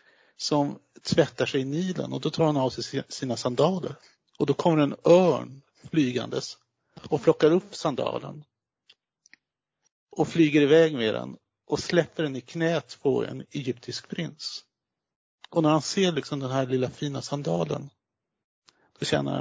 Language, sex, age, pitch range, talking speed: Swedish, male, 50-69, 130-160 Hz, 150 wpm